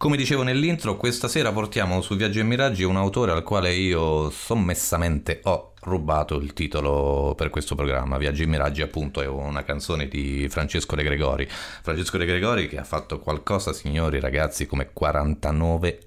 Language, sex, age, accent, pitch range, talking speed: Italian, male, 30-49, native, 75-95 Hz, 170 wpm